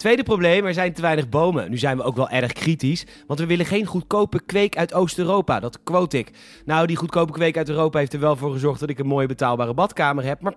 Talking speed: 250 wpm